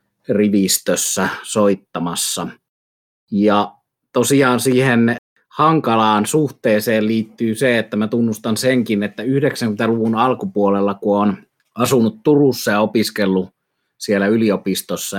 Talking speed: 95 wpm